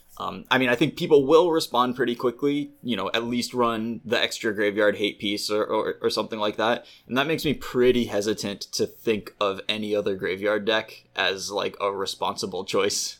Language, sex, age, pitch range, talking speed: English, male, 20-39, 100-125 Hz, 195 wpm